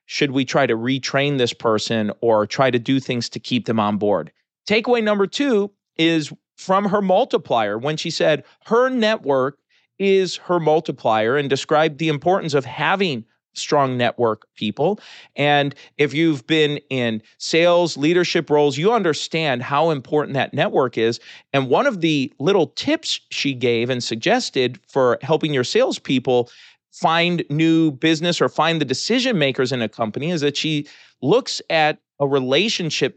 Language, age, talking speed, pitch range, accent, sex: English, 40-59, 160 wpm, 130-165 Hz, American, male